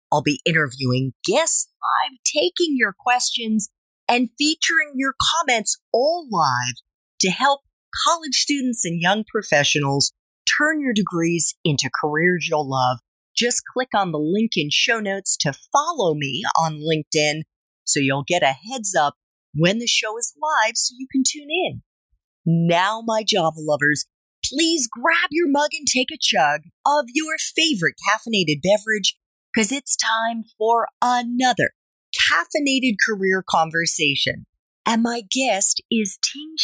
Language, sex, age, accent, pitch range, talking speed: English, female, 40-59, American, 160-260 Hz, 140 wpm